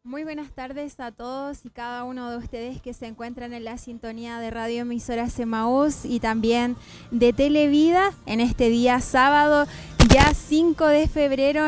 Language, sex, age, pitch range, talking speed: Spanish, female, 20-39, 235-275 Hz, 165 wpm